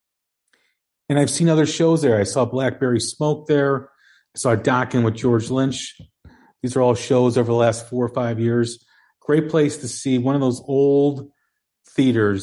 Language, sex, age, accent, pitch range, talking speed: English, male, 40-59, American, 115-140 Hz, 180 wpm